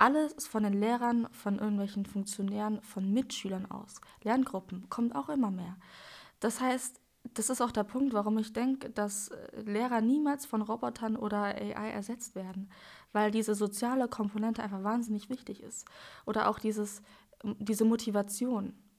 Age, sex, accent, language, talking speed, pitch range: 20-39, female, German, German, 150 wpm, 205-230 Hz